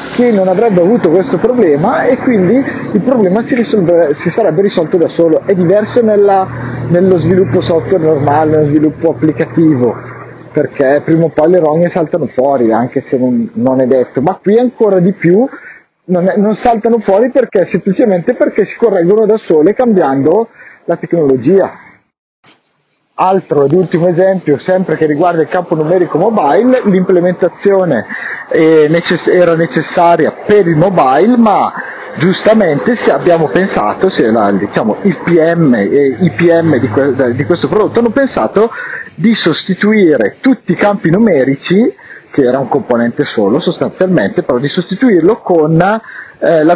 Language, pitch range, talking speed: Italian, 160-210 Hz, 140 wpm